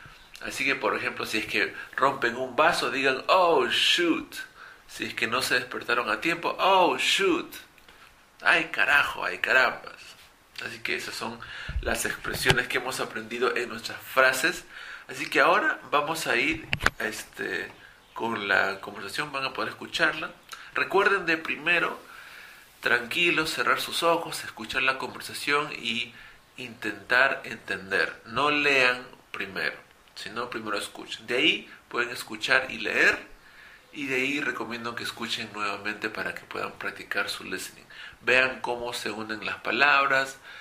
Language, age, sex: English, 50-69, male